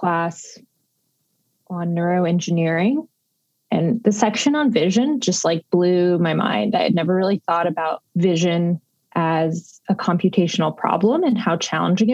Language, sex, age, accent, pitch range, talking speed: English, female, 20-39, American, 170-220 Hz, 135 wpm